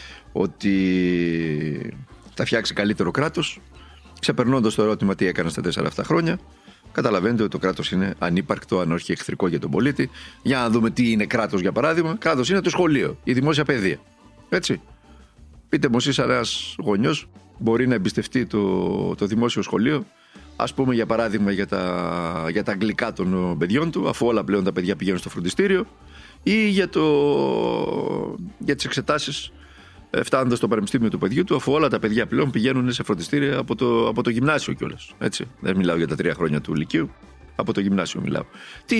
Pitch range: 95-145 Hz